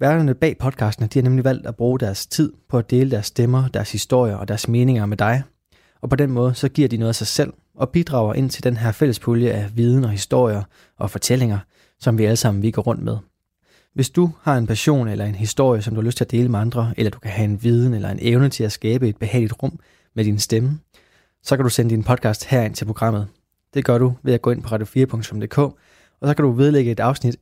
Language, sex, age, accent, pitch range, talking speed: Danish, male, 20-39, native, 110-130 Hz, 250 wpm